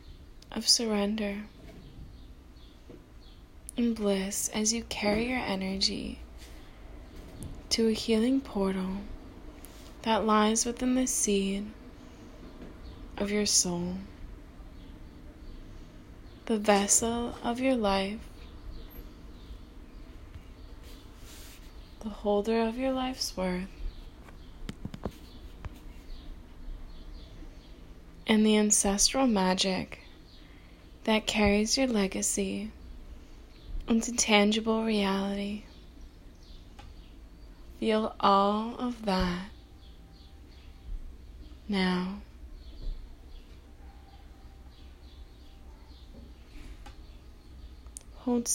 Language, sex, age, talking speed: English, female, 20-39, 60 wpm